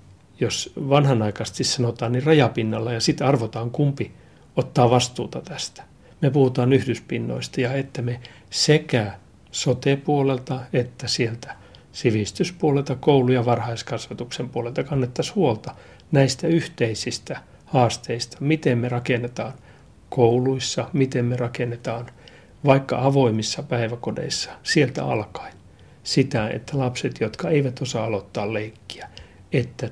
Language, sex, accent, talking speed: Finnish, male, native, 105 wpm